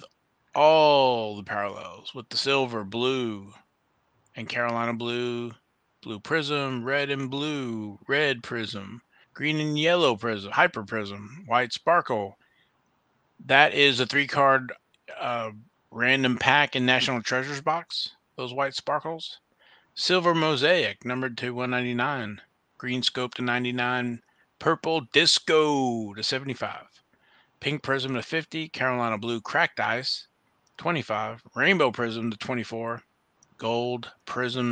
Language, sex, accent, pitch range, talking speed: English, male, American, 115-135 Hz, 115 wpm